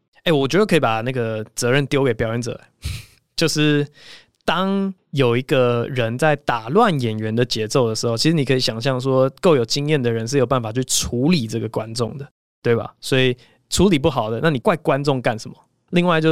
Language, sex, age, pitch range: Chinese, male, 20-39, 125-165 Hz